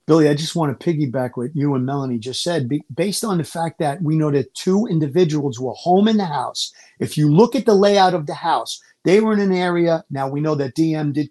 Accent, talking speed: American, 250 wpm